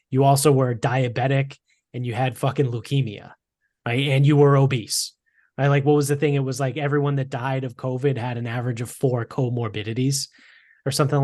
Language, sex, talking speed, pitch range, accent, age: English, male, 190 wpm, 125-145 Hz, American, 20-39